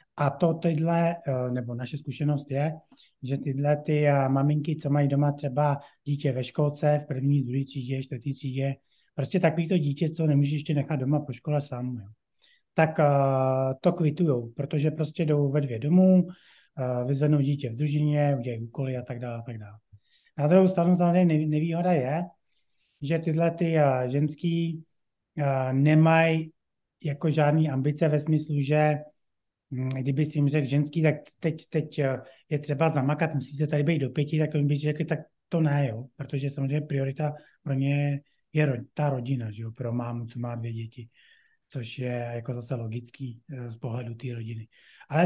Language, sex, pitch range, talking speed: Czech, male, 135-165 Hz, 165 wpm